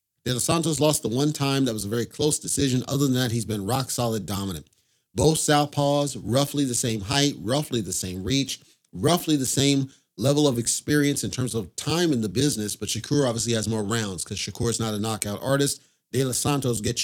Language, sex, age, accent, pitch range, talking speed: English, male, 40-59, American, 115-140 Hz, 210 wpm